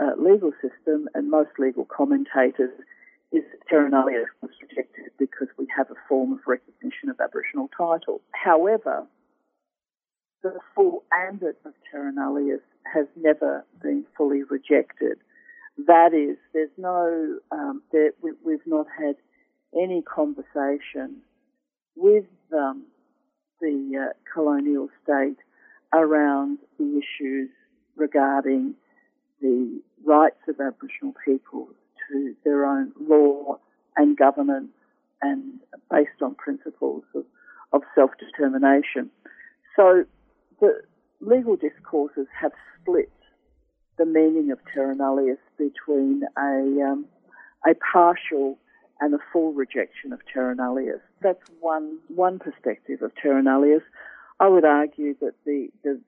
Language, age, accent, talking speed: English, 50-69, Australian, 110 wpm